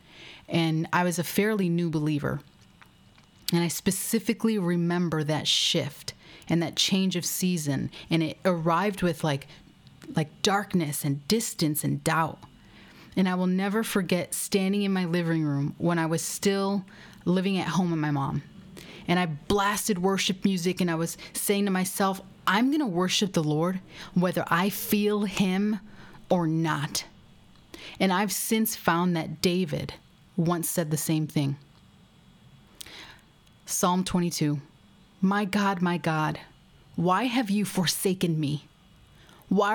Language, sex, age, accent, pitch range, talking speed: English, female, 30-49, American, 165-200 Hz, 145 wpm